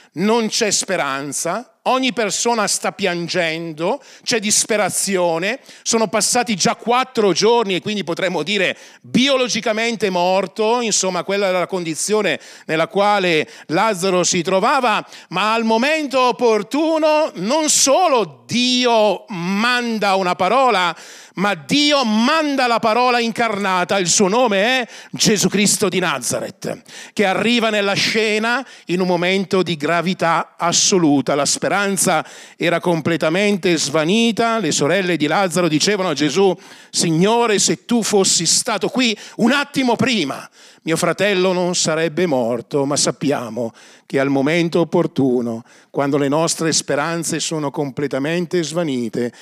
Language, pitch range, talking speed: Italian, 160-215 Hz, 125 wpm